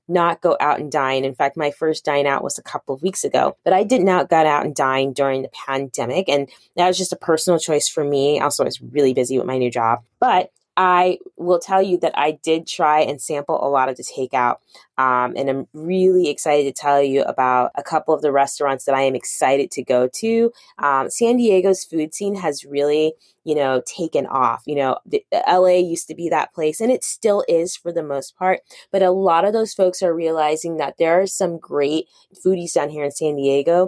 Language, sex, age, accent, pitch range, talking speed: English, female, 20-39, American, 140-185 Hz, 230 wpm